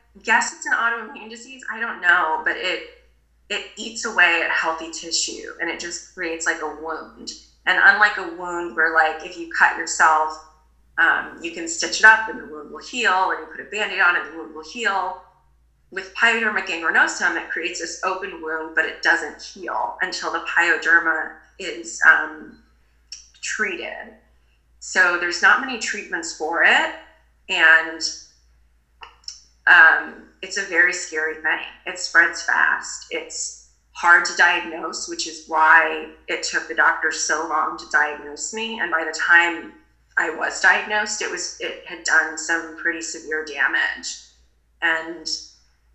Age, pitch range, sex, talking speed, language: 20-39, 155-200 Hz, female, 160 wpm, English